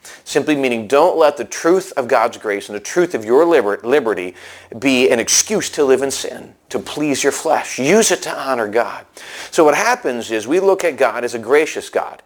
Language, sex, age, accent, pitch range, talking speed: English, male, 40-59, American, 130-190 Hz, 210 wpm